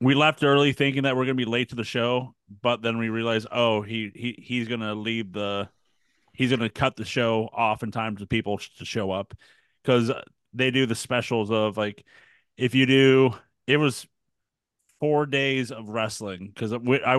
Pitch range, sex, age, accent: 110-130 Hz, male, 30-49, American